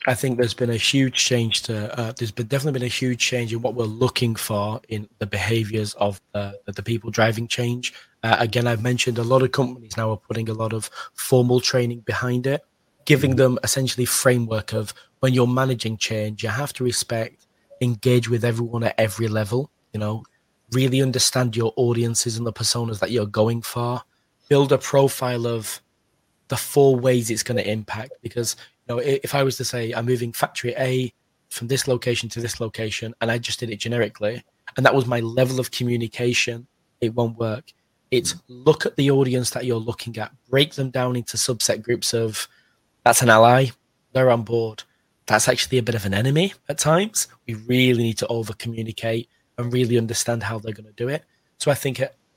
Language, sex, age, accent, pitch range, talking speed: English, male, 20-39, British, 115-130 Hz, 200 wpm